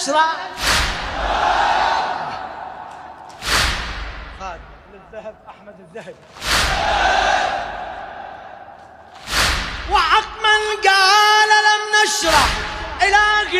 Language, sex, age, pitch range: Arabic, male, 30-49, 275-375 Hz